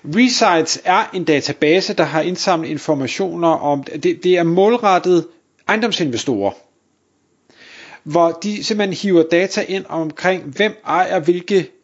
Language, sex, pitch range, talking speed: Danish, male, 150-190 Hz, 125 wpm